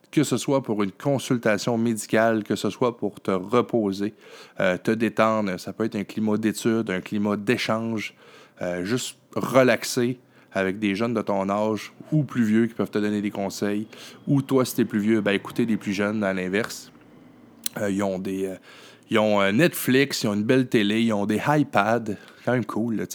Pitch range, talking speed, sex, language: 100-130 Hz, 200 wpm, male, French